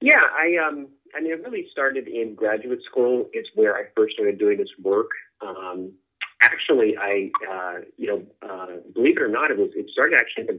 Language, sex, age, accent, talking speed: English, male, 30-49, American, 210 wpm